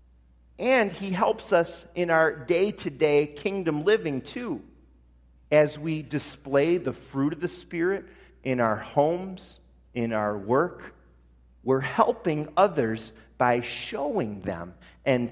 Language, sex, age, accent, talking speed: English, male, 40-59, American, 130 wpm